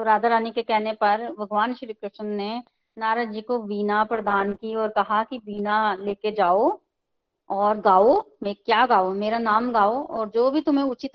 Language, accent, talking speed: Hindi, native, 190 wpm